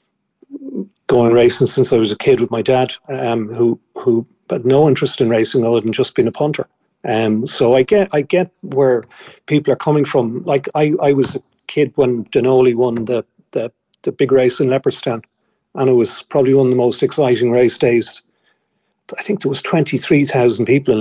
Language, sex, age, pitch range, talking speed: English, male, 40-59, 120-150 Hz, 205 wpm